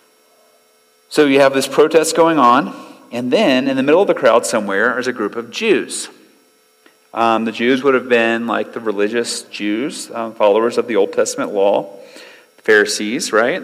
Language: English